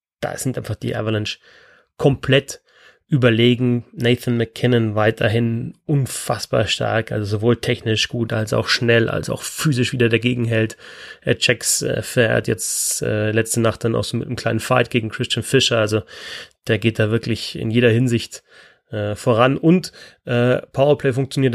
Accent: German